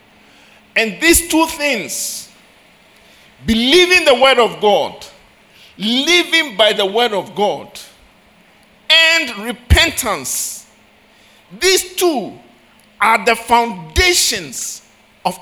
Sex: male